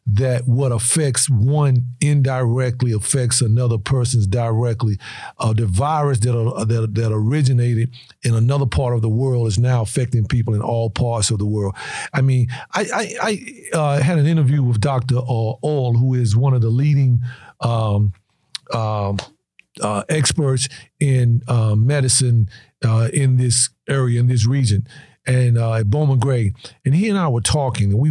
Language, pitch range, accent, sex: English, 115-135 Hz, American, male